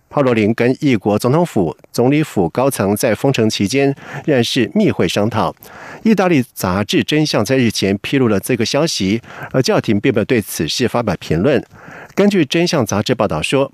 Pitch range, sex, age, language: 105-145 Hz, male, 50-69, French